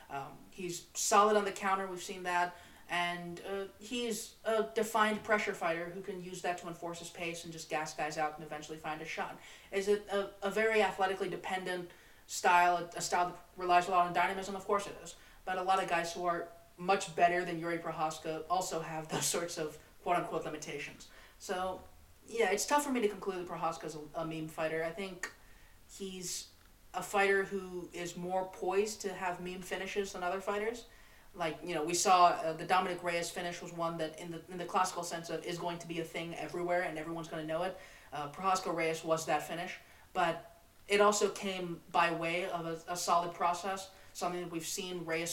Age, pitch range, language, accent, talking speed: 30-49, 165-190 Hz, English, American, 210 wpm